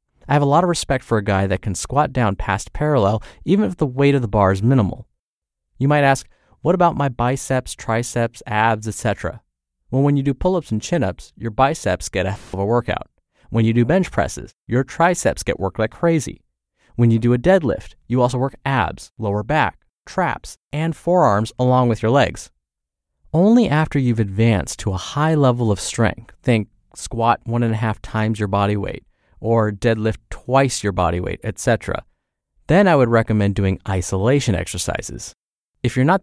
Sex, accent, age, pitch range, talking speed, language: male, American, 30-49, 100-140 Hz, 190 wpm, English